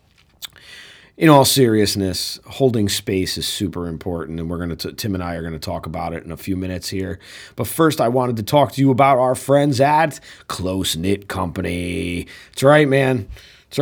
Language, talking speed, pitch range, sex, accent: English, 195 wpm, 90-120 Hz, male, American